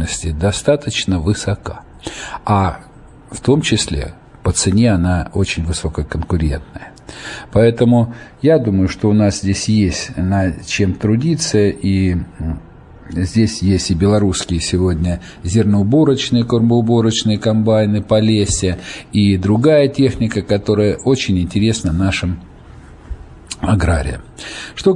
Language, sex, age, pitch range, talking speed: Russian, male, 50-69, 85-115 Hz, 100 wpm